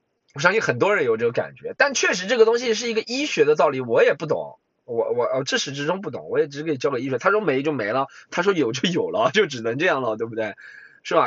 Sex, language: male, Chinese